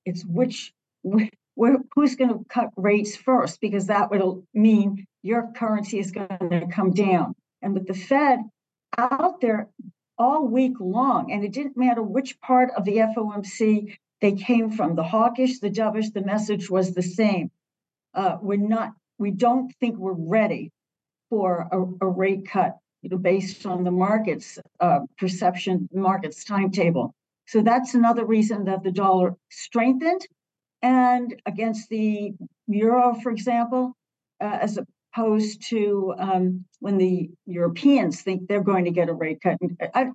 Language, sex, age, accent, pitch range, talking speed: English, female, 60-79, American, 185-235 Hz, 155 wpm